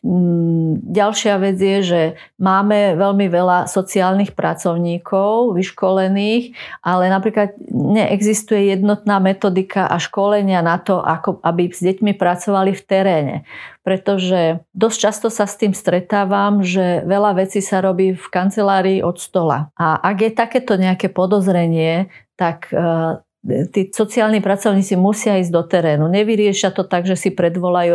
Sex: female